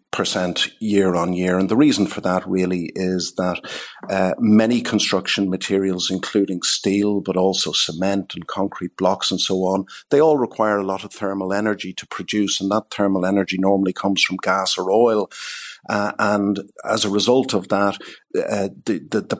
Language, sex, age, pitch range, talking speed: English, male, 50-69, 95-105 Hz, 180 wpm